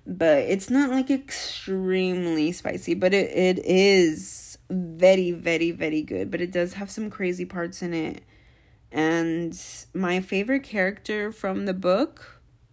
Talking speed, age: 140 wpm, 20-39